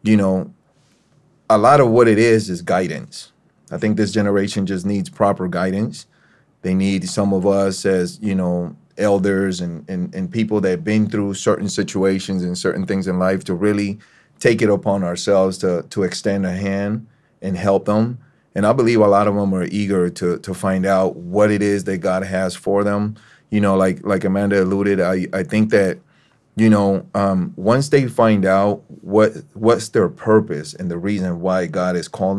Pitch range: 95-105 Hz